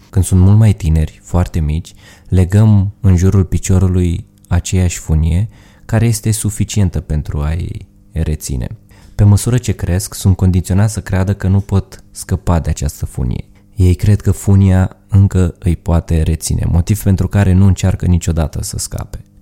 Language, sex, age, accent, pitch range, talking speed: Romanian, male, 20-39, native, 85-100 Hz, 155 wpm